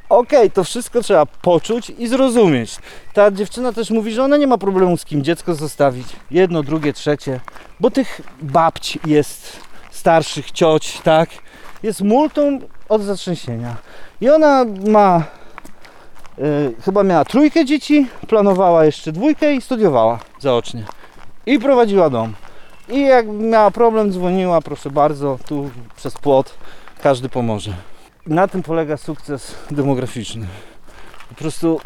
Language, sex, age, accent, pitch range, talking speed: Polish, male, 40-59, native, 140-210 Hz, 135 wpm